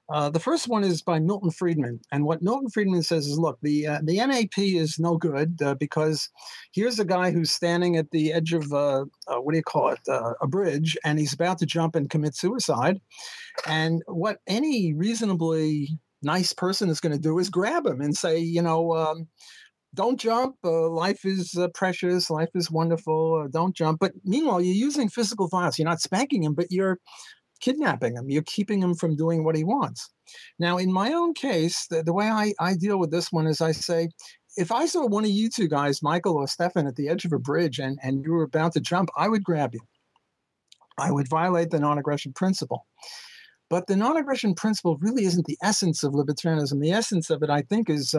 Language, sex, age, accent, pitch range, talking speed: English, male, 50-69, American, 155-190 Hz, 215 wpm